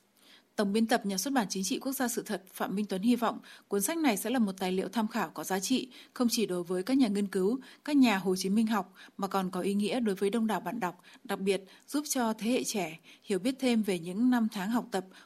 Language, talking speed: Vietnamese, 280 wpm